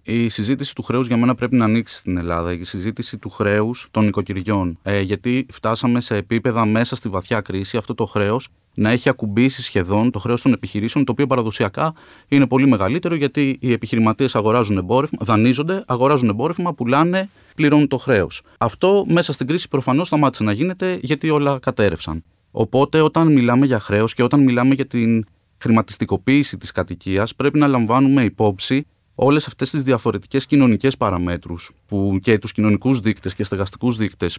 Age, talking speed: 30-49, 160 wpm